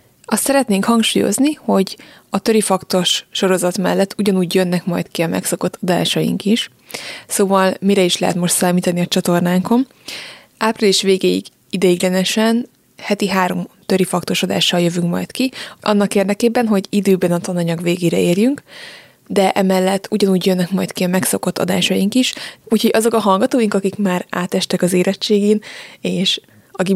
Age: 20-39